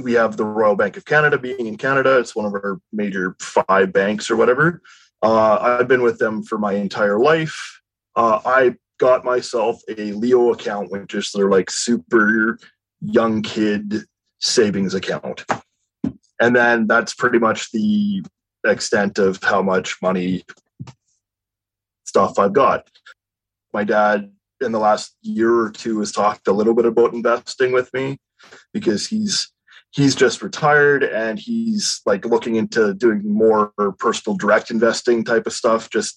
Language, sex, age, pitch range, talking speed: English, male, 20-39, 105-125 Hz, 155 wpm